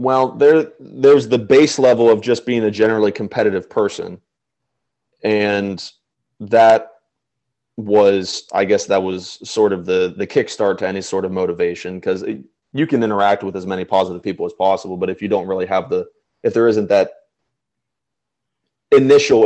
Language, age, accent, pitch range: English, 20-39, American, 95-125 Hz